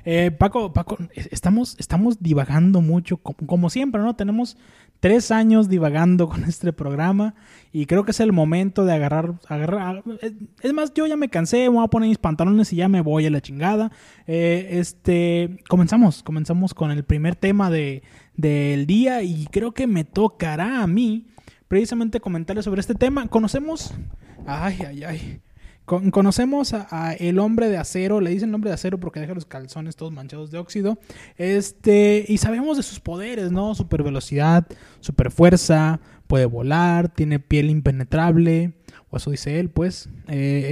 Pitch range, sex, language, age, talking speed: 155-210 Hz, male, Spanish, 20-39, 170 wpm